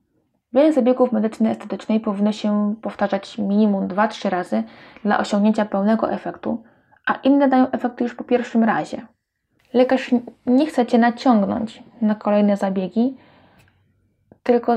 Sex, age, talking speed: female, 20-39, 125 wpm